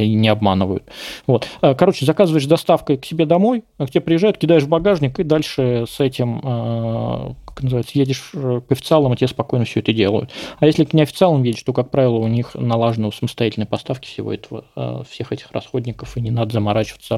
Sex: male